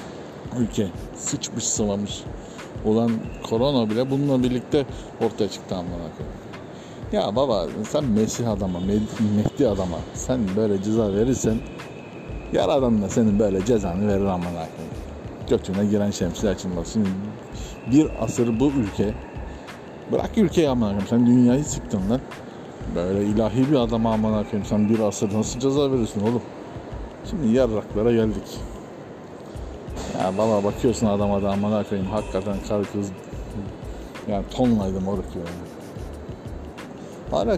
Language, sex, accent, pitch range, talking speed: Turkish, male, native, 100-120 Hz, 120 wpm